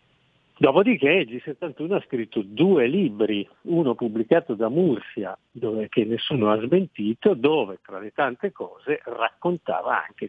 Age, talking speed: 50-69, 135 wpm